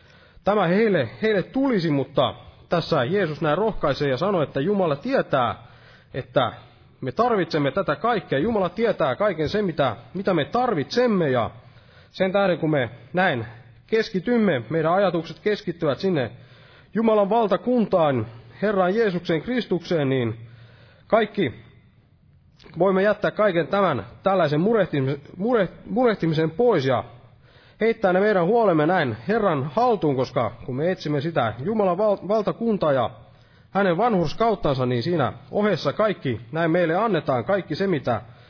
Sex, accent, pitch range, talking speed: male, native, 130-200 Hz, 130 wpm